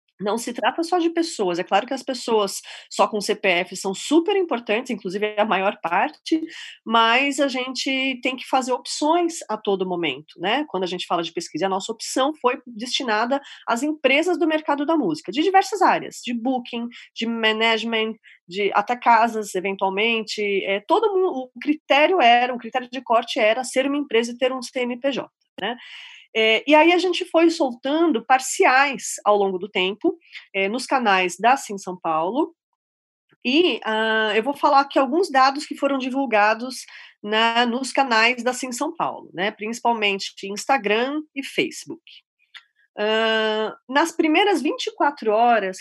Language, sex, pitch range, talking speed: Portuguese, female, 210-285 Hz, 165 wpm